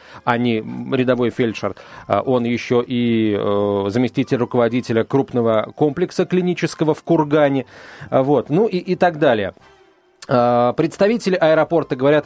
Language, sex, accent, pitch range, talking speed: Russian, male, native, 120-170 Hz, 120 wpm